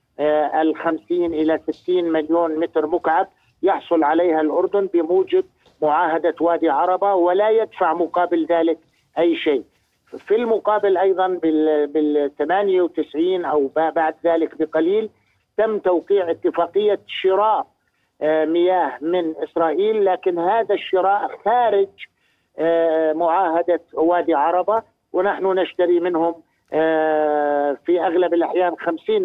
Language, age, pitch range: Arabic, 50-69, 155-180 Hz